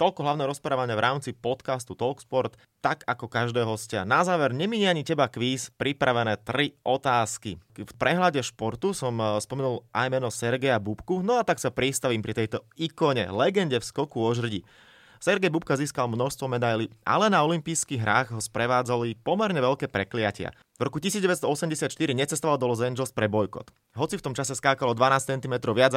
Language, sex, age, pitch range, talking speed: Slovak, male, 30-49, 110-140 Hz, 170 wpm